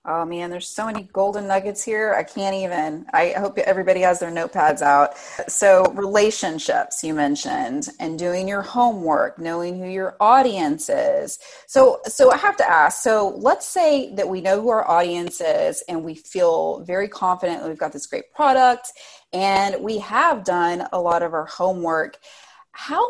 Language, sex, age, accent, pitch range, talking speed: English, female, 30-49, American, 175-225 Hz, 175 wpm